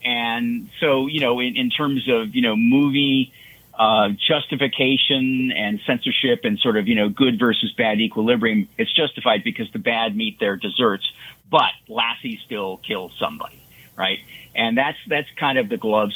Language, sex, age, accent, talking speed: English, male, 50-69, American, 165 wpm